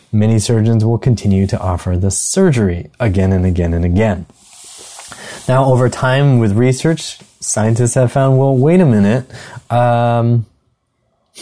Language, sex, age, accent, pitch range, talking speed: English, male, 20-39, American, 105-140 Hz, 135 wpm